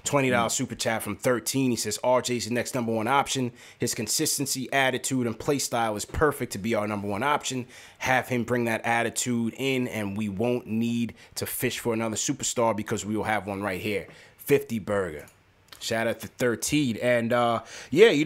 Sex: male